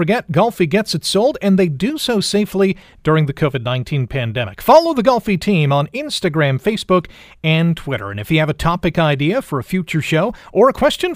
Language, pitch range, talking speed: English, 145-195 Hz, 200 wpm